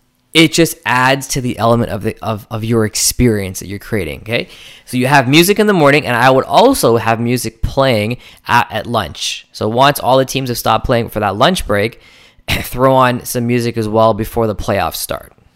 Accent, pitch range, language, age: American, 110-140 Hz, English, 10-29